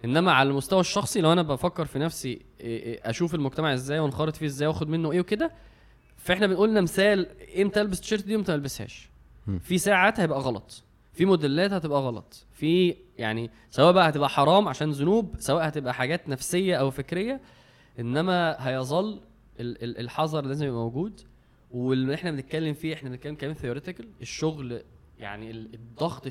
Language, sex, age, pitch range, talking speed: Arabic, male, 20-39, 125-170 Hz, 155 wpm